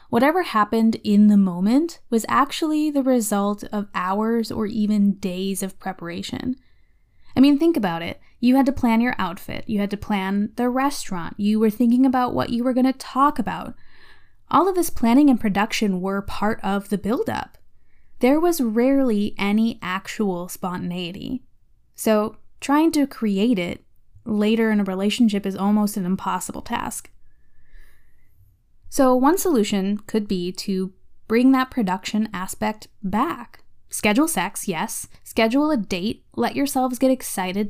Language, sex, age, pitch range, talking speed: English, female, 10-29, 200-270 Hz, 155 wpm